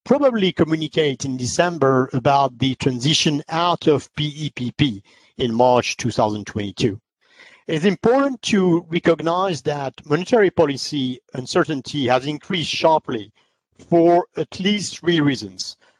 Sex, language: male, English